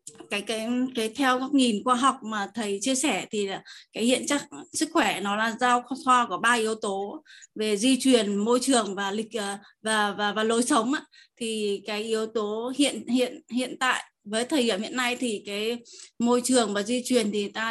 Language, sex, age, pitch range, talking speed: Vietnamese, female, 20-39, 210-260 Hz, 205 wpm